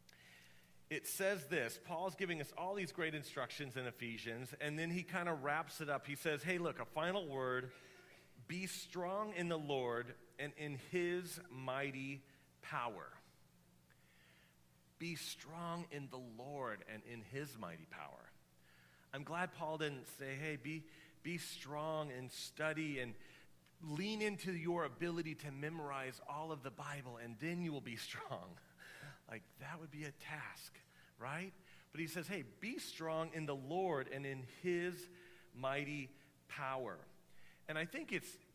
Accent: American